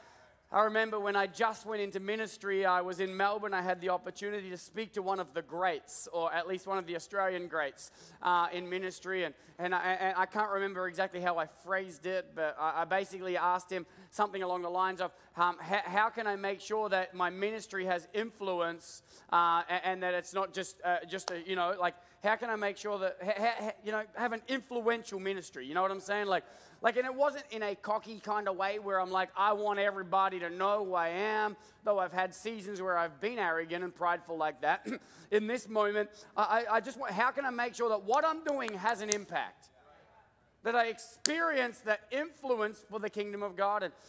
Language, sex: English, male